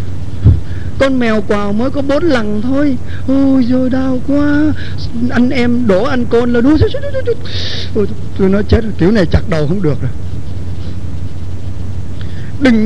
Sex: male